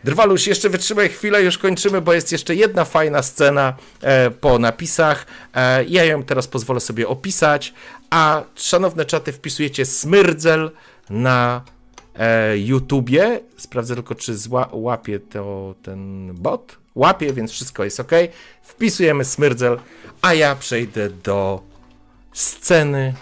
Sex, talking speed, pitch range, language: male, 130 wpm, 105-175 Hz, Polish